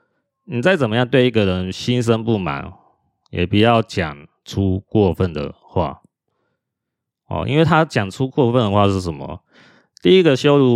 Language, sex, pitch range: Chinese, male, 90-120 Hz